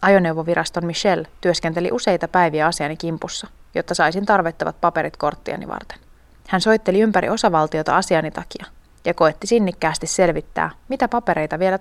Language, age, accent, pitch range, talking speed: Finnish, 30-49, native, 165-205 Hz, 130 wpm